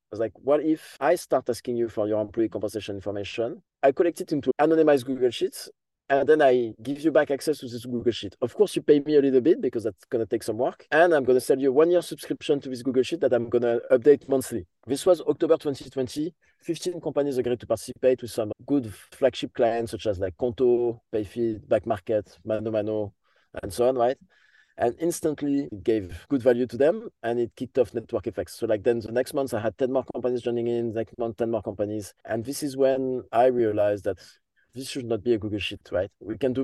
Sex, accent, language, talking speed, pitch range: male, French, English, 235 wpm, 115-135 Hz